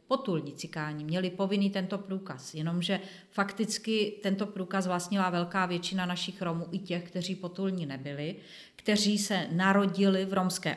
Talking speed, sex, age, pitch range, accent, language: 135 wpm, female, 40-59, 175-200 Hz, native, Czech